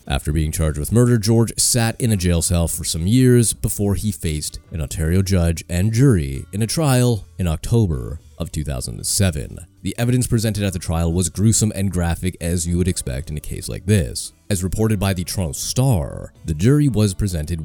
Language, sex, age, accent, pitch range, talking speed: English, male, 30-49, American, 80-105 Hz, 195 wpm